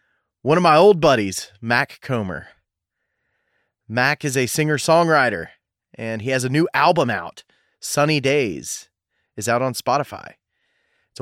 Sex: male